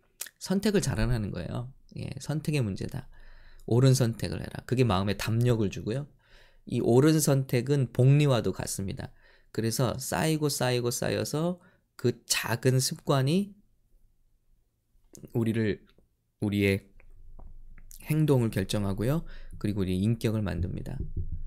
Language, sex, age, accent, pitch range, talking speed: English, male, 20-39, Korean, 100-130 Hz, 95 wpm